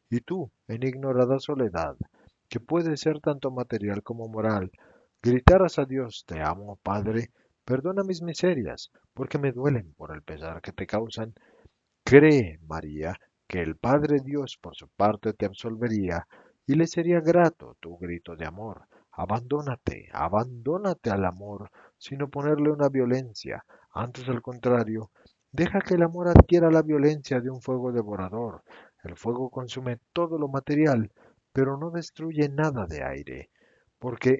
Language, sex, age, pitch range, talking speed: Spanish, male, 50-69, 105-150 Hz, 145 wpm